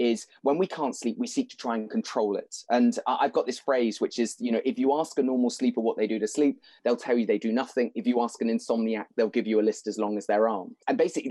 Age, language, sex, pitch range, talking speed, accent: 20-39, English, male, 120-155 Hz, 290 wpm, British